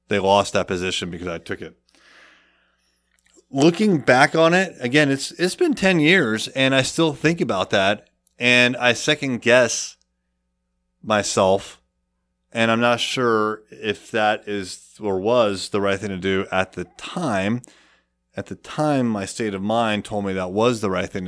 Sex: male